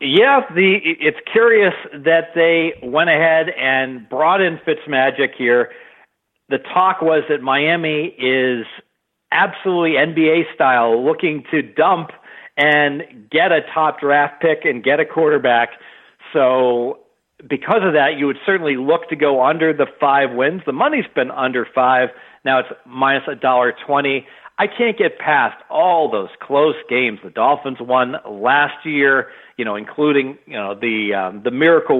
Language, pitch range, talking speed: English, 125-165 Hz, 145 wpm